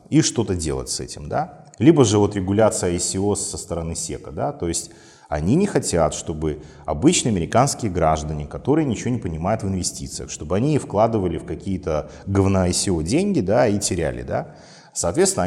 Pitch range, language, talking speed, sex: 85-120 Hz, Russian, 165 wpm, male